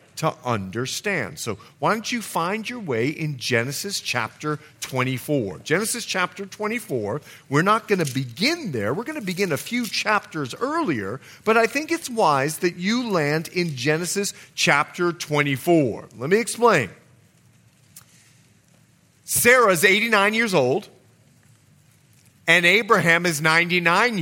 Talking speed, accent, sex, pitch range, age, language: 135 wpm, American, male, 145-220 Hz, 40-59, English